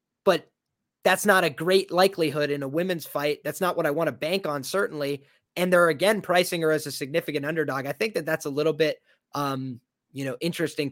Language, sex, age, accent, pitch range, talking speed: English, male, 20-39, American, 150-190 Hz, 215 wpm